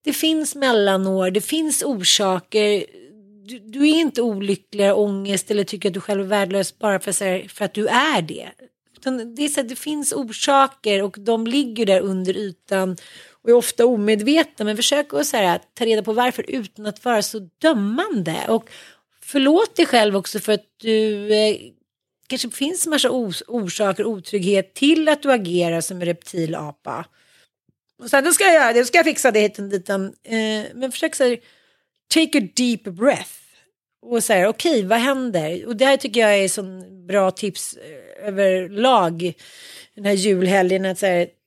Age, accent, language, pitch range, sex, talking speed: 30-49, native, Swedish, 200-270 Hz, female, 180 wpm